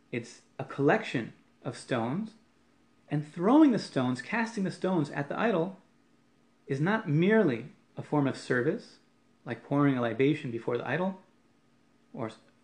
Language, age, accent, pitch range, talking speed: English, 30-49, American, 140-210 Hz, 140 wpm